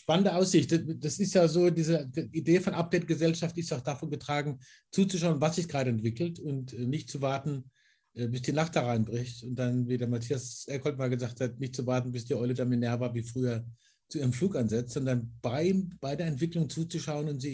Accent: German